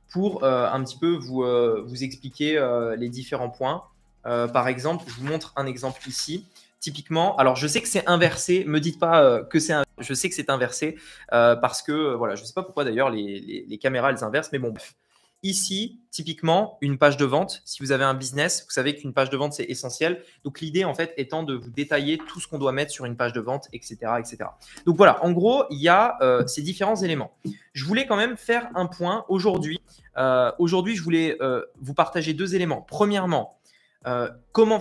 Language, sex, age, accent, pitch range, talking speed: French, male, 20-39, French, 130-180 Hz, 220 wpm